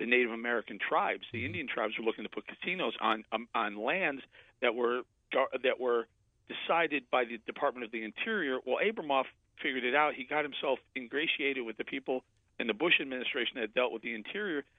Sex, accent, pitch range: male, American, 110-150 Hz